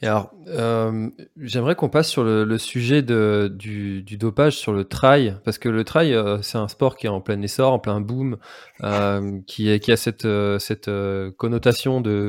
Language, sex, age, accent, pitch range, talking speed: French, male, 20-39, French, 100-125 Hz, 200 wpm